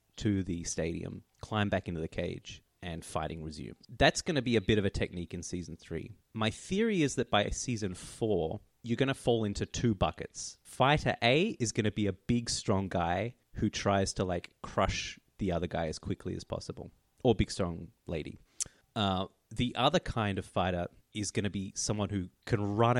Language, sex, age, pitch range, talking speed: English, male, 30-49, 95-115 Hz, 200 wpm